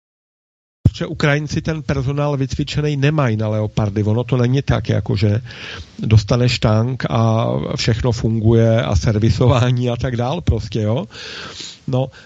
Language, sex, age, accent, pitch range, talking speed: Czech, male, 50-69, native, 115-150 Hz, 130 wpm